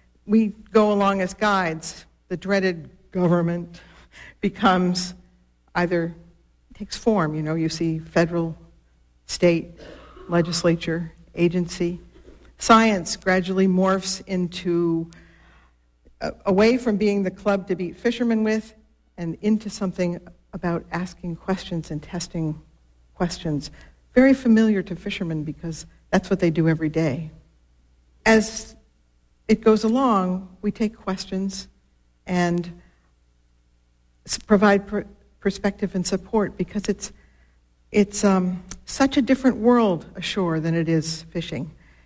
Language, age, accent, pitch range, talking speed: English, 60-79, American, 160-205 Hz, 115 wpm